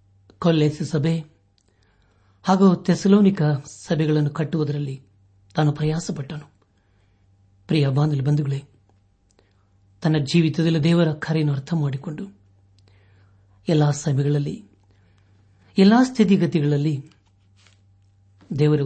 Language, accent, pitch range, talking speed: Kannada, native, 100-160 Hz, 65 wpm